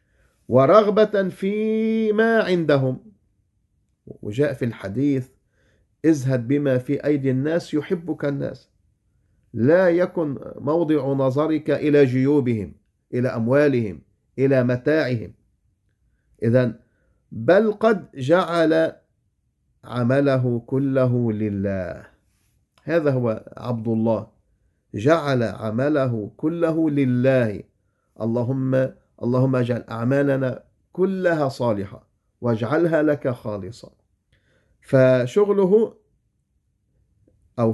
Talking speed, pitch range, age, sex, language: 80 wpm, 110-150 Hz, 50-69, male, English